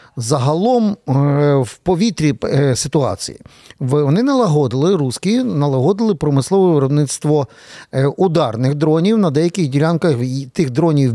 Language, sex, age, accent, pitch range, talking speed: Ukrainian, male, 50-69, native, 130-155 Hz, 95 wpm